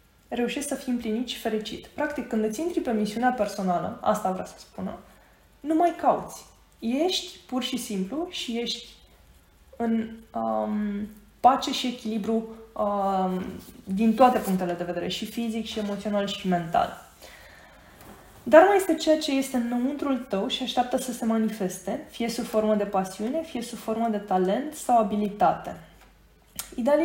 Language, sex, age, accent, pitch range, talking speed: Romanian, female, 20-39, native, 205-250 Hz, 150 wpm